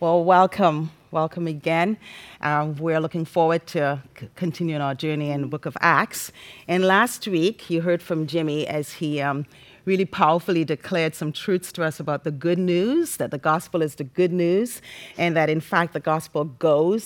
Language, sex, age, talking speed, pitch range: English, female, 40-59, 185 wpm, 155-190 Hz